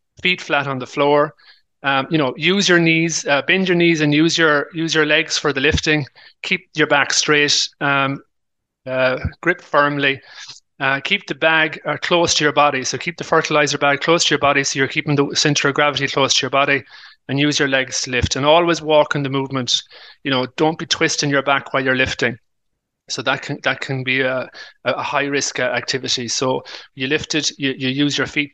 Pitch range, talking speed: 135-165 Hz, 215 wpm